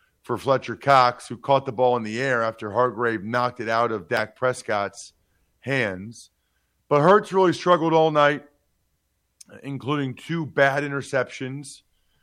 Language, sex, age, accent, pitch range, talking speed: English, male, 40-59, American, 110-145 Hz, 140 wpm